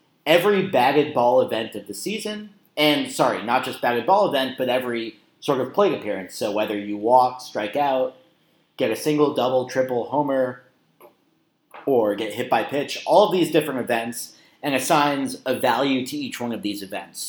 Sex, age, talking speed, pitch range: male, 30-49, 180 wpm, 115-145 Hz